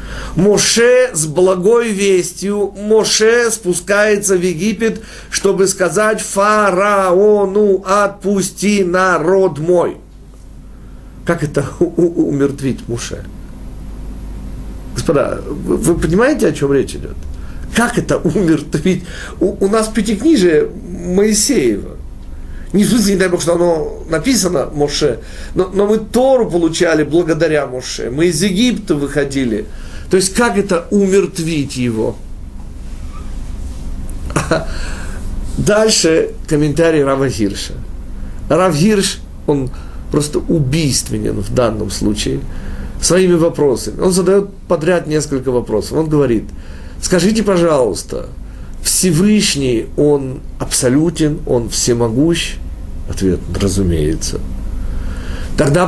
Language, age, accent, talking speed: Russian, 50-69, native, 95 wpm